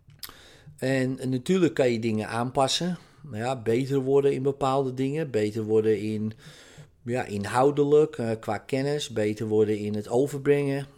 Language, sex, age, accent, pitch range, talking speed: Dutch, male, 40-59, Dutch, 105-135 Hz, 150 wpm